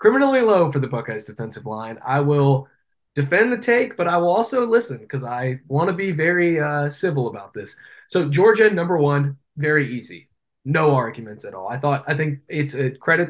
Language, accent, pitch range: English, American, 125-155 Hz